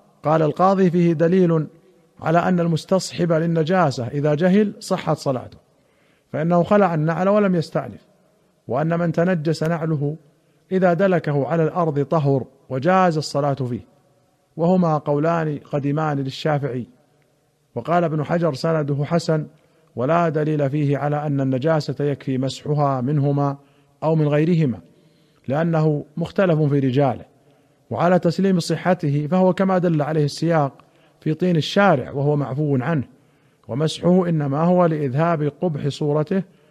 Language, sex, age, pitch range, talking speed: Arabic, male, 50-69, 140-165 Hz, 120 wpm